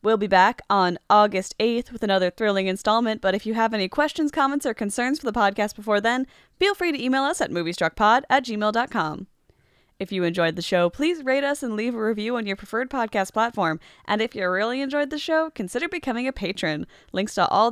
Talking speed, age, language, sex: 215 wpm, 10-29, English, female